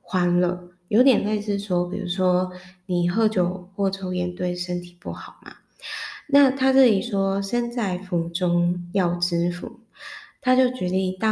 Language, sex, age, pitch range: Chinese, female, 20-39, 175-210 Hz